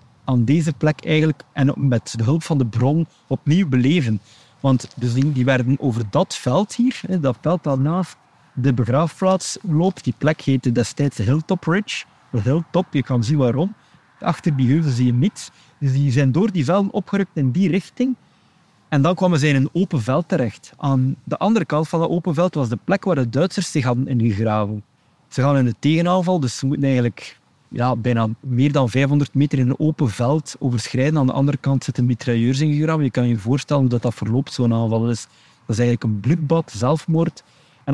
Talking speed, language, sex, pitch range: 200 wpm, Dutch, male, 125-160 Hz